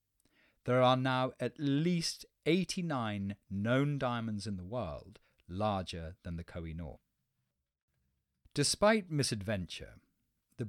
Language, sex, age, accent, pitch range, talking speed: English, male, 40-59, British, 95-130 Hz, 100 wpm